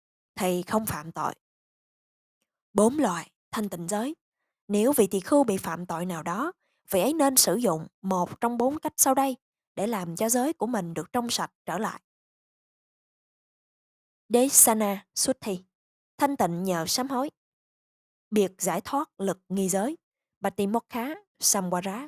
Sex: female